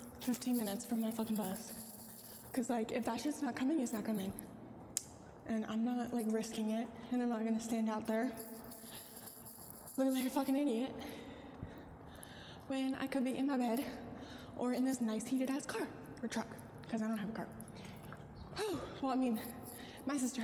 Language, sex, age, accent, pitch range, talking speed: English, female, 10-29, American, 225-280 Hz, 180 wpm